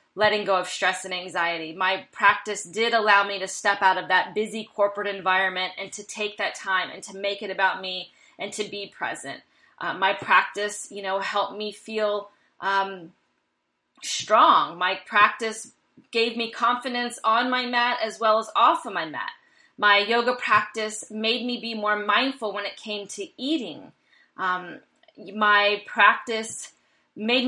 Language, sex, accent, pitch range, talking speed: English, female, American, 200-235 Hz, 165 wpm